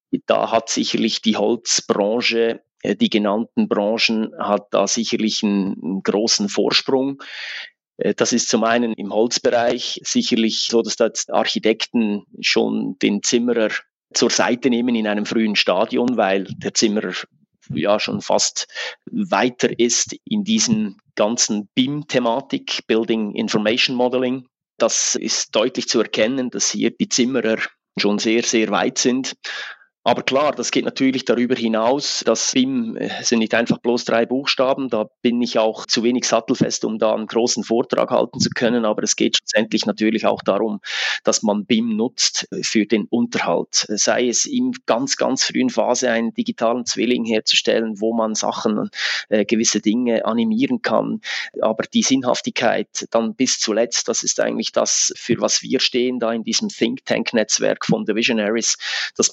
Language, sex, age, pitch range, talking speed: German, male, 30-49, 110-130 Hz, 155 wpm